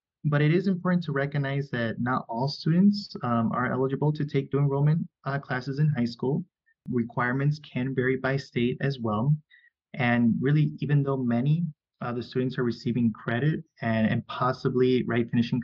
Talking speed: 175 wpm